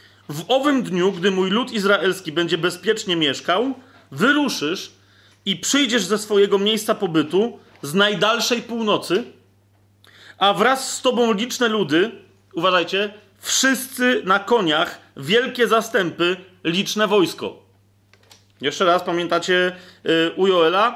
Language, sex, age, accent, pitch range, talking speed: Polish, male, 40-59, native, 160-210 Hz, 110 wpm